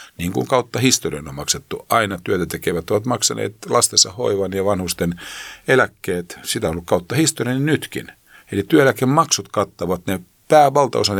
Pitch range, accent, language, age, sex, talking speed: 90-120 Hz, native, Finnish, 50-69, male, 145 wpm